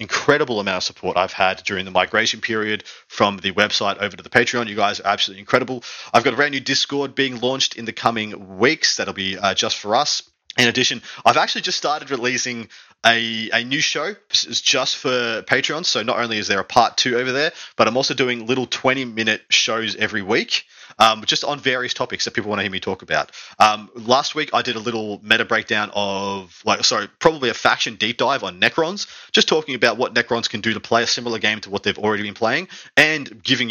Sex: male